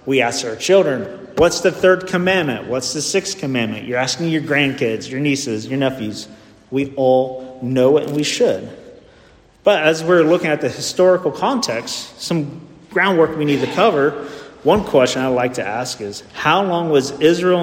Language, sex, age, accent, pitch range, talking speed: English, male, 40-59, American, 130-165 Hz, 180 wpm